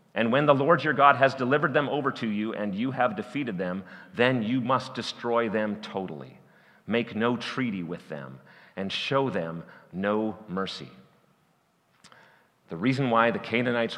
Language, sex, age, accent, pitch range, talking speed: English, male, 40-59, American, 115-160 Hz, 165 wpm